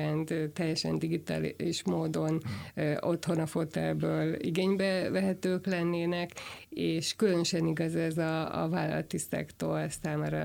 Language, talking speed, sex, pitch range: Hungarian, 105 wpm, female, 150-175 Hz